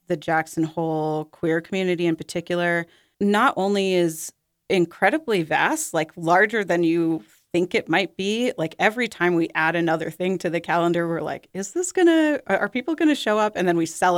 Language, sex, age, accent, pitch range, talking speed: English, female, 30-49, American, 165-205 Hz, 185 wpm